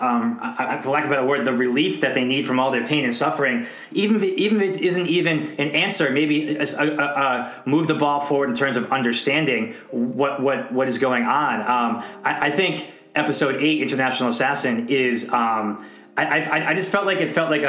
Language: English